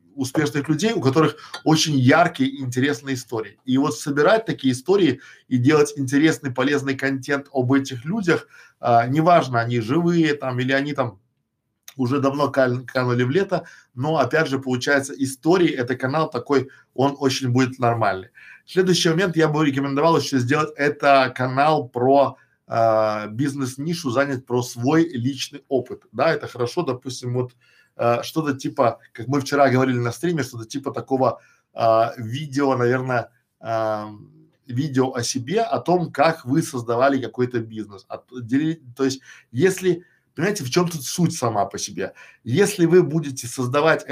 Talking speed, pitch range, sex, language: 150 wpm, 125-150 Hz, male, Russian